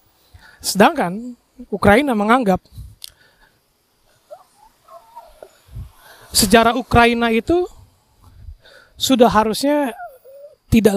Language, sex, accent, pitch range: Indonesian, male, native, 190-245 Hz